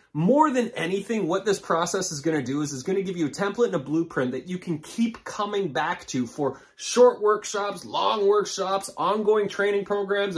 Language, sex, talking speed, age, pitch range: English, male, 210 wpm, 30-49, 150-205 Hz